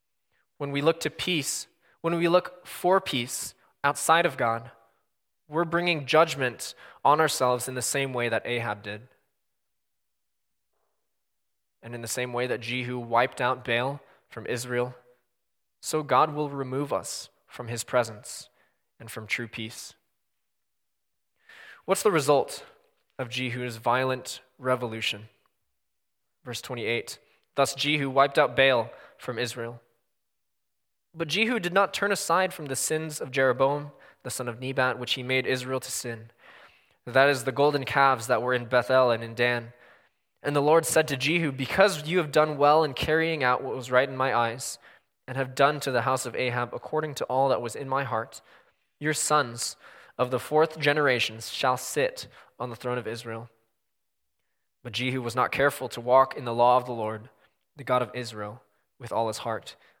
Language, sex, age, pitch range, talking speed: English, male, 20-39, 120-145 Hz, 170 wpm